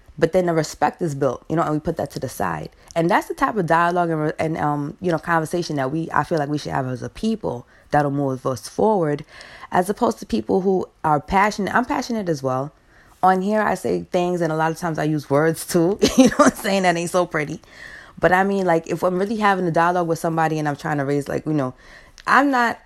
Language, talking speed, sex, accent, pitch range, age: English, 255 wpm, female, American, 140-185 Hz, 20-39